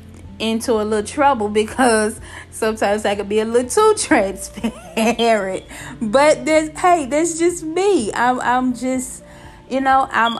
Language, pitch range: English, 205-240 Hz